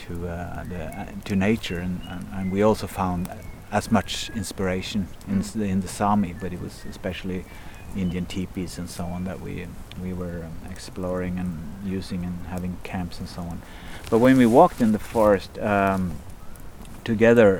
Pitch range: 90-105 Hz